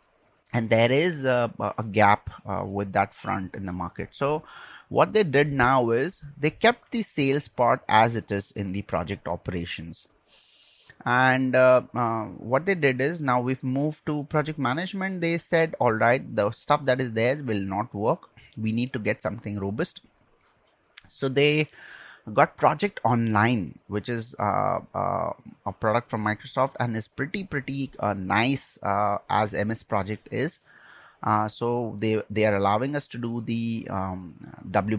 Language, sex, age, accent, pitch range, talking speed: English, male, 30-49, Indian, 100-130 Hz, 170 wpm